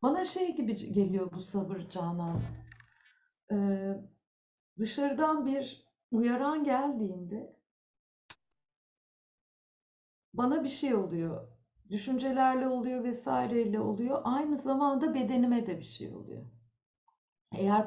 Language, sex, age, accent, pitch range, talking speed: Turkish, female, 60-79, native, 190-265 Hz, 95 wpm